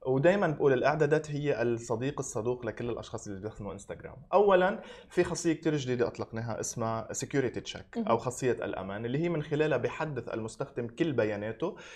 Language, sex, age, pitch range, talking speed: Arabic, male, 20-39, 110-145 Hz, 150 wpm